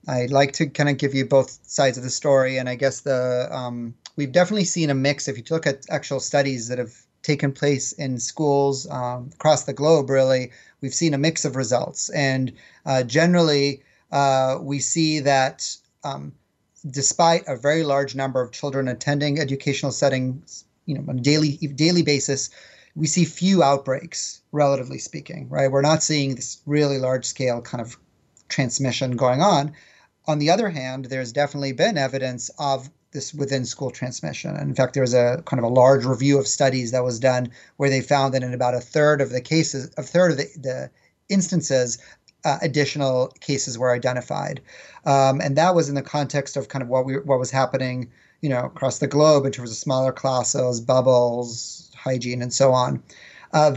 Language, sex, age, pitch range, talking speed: English, male, 30-49, 130-145 Hz, 190 wpm